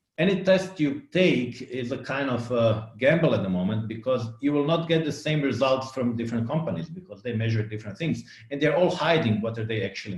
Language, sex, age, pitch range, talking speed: English, male, 50-69, 115-155 Hz, 225 wpm